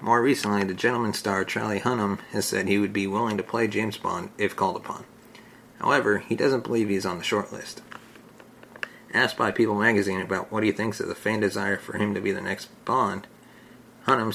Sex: male